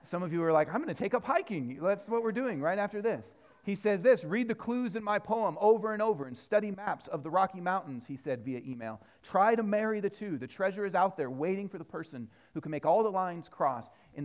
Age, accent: 40-59, American